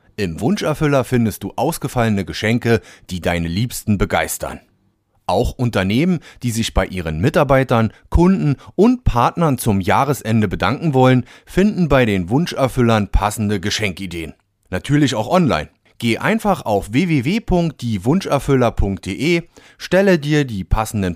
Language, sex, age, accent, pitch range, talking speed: German, male, 30-49, German, 110-135 Hz, 115 wpm